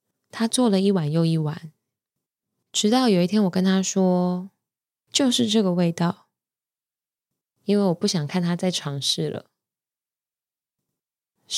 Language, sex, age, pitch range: Chinese, female, 20-39, 170-200 Hz